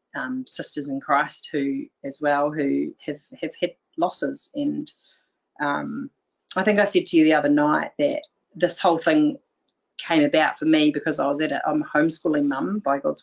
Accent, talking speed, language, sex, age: Australian, 190 wpm, English, female, 40-59